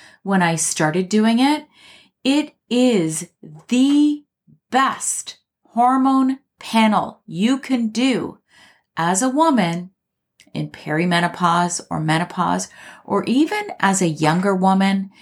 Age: 30-49